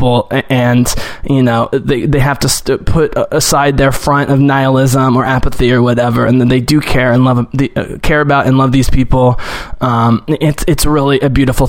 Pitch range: 130-150 Hz